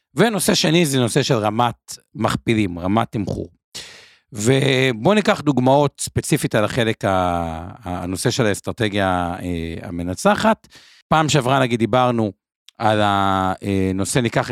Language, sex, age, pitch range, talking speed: Hebrew, male, 50-69, 105-145 Hz, 110 wpm